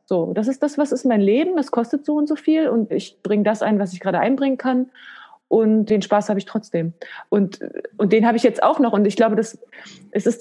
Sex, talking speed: female, 255 wpm